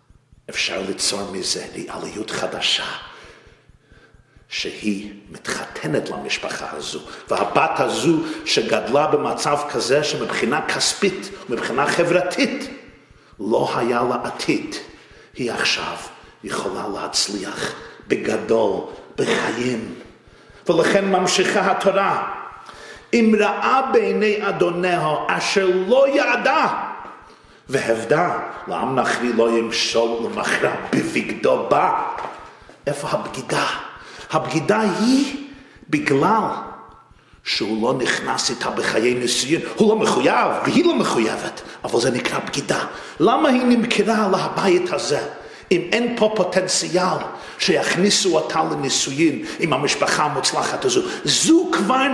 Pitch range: 175-270 Hz